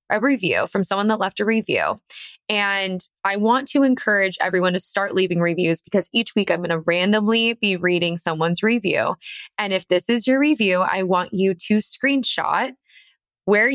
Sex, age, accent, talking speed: female, 20-39, American, 180 wpm